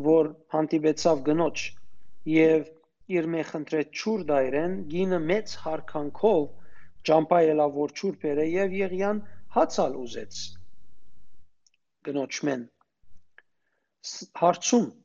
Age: 40-59